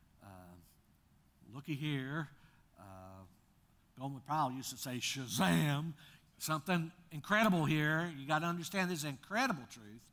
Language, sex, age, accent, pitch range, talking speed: English, male, 60-79, American, 115-165 Hz, 120 wpm